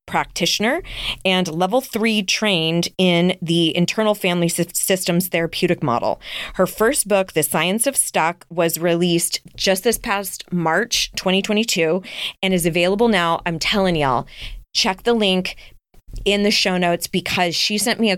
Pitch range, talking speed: 170-200 Hz, 150 wpm